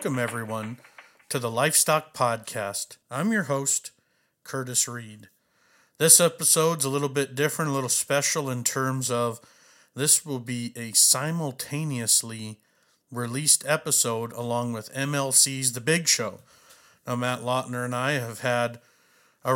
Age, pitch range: 50-69, 115-135 Hz